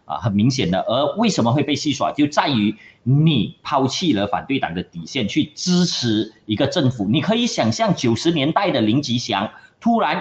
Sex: male